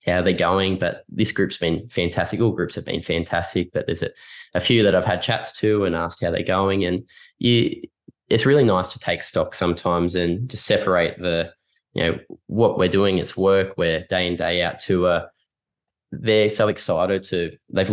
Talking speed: 200 wpm